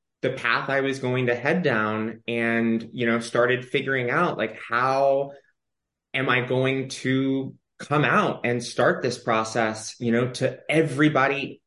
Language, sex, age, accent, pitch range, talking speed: English, male, 20-39, American, 120-140 Hz, 155 wpm